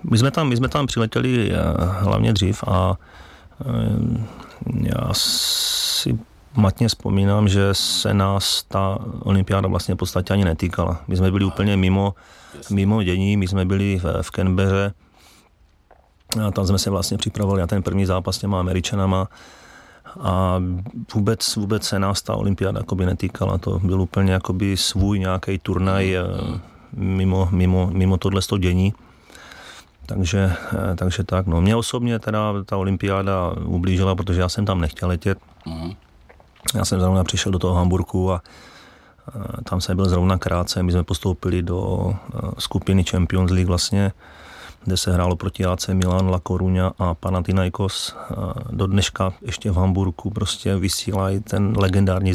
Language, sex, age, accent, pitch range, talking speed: Czech, male, 30-49, native, 90-100 Hz, 145 wpm